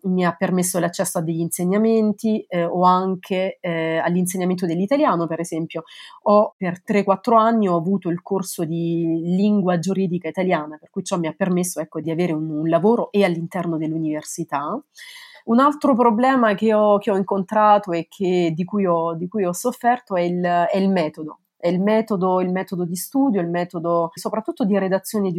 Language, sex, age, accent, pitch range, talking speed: Italian, female, 30-49, native, 170-205 Hz, 180 wpm